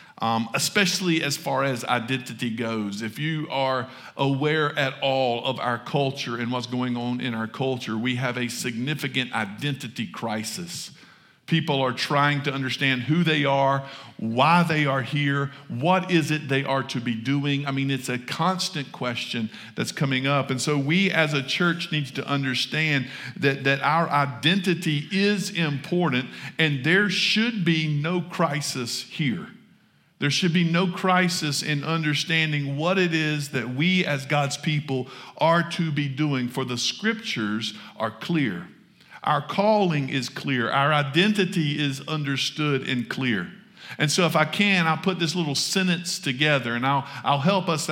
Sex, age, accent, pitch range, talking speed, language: male, 50-69, American, 130-165 Hz, 165 wpm, English